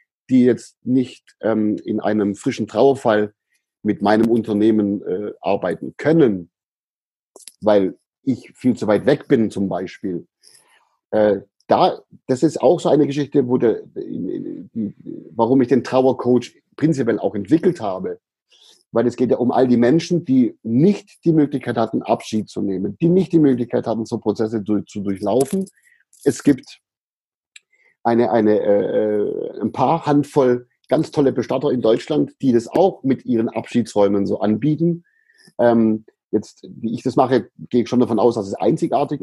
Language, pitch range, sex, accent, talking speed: German, 110-150 Hz, male, German, 160 wpm